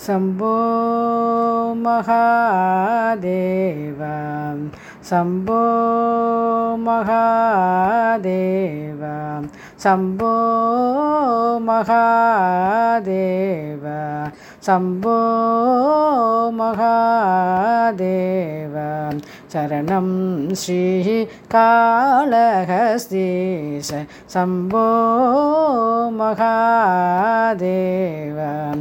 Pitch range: 185-230 Hz